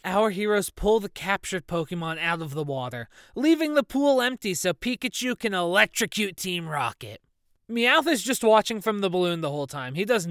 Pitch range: 170-230 Hz